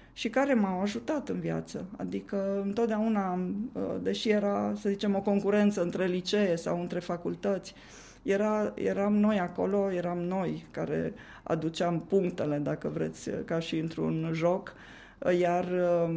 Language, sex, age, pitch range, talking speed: Romanian, female, 20-39, 175-210 Hz, 130 wpm